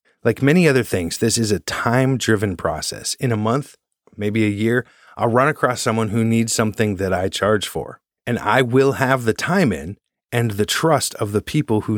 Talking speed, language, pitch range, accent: 200 wpm, English, 100-130 Hz, American